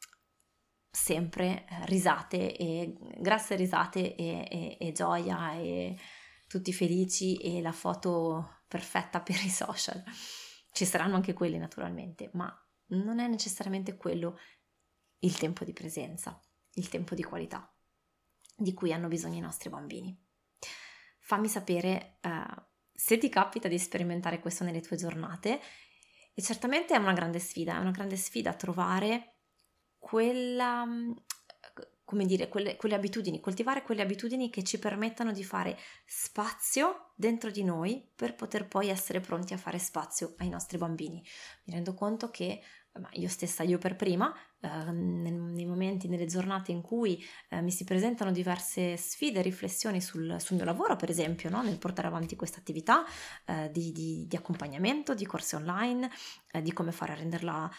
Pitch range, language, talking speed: 170-205 Hz, Italian, 150 wpm